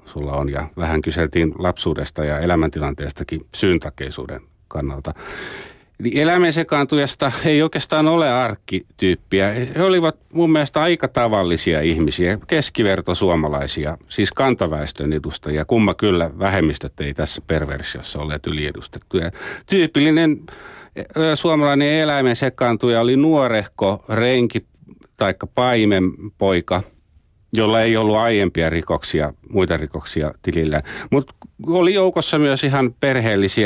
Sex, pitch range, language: male, 80-120 Hz, Finnish